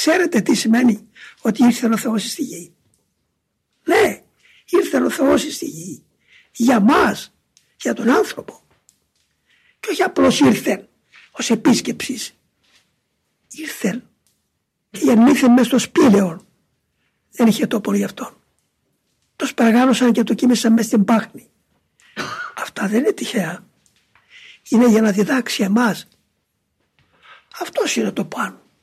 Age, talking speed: 60-79, 120 wpm